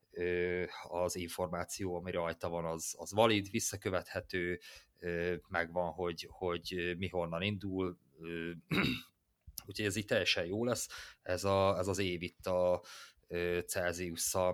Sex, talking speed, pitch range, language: male, 120 wpm, 85-95 Hz, Hungarian